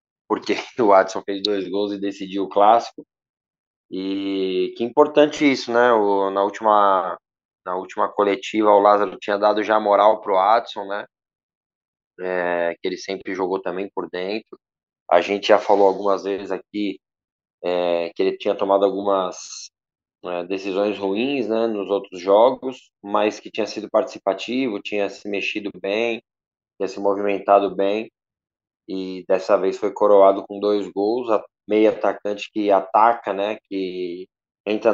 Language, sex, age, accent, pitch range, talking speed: Portuguese, male, 20-39, Brazilian, 95-105 Hz, 150 wpm